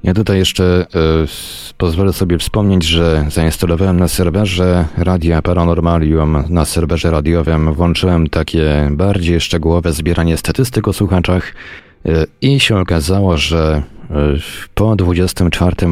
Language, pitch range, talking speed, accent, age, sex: Polish, 80-95 Hz, 110 wpm, native, 30-49, male